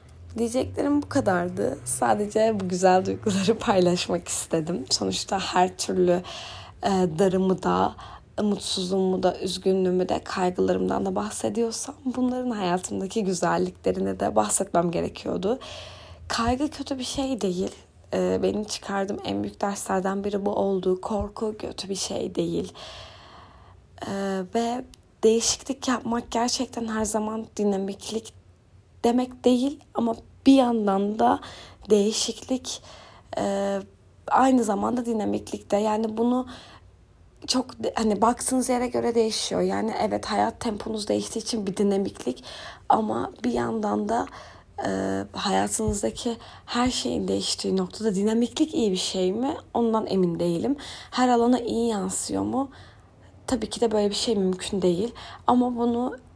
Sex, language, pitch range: female, Turkish, 180-235 Hz